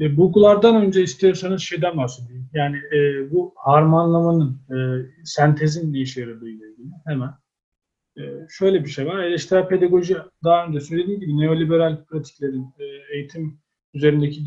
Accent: native